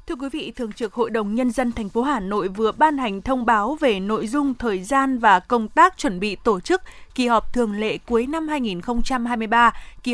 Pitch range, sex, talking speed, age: 215-265 Hz, female, 225 wpm, 20-39